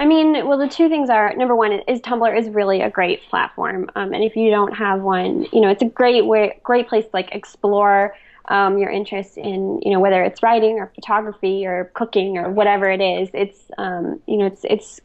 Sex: female